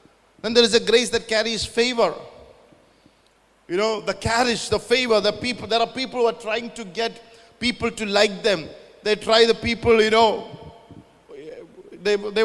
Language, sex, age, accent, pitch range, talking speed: English, male, 50-69, Indian, 190-230 Hz, 175 wpm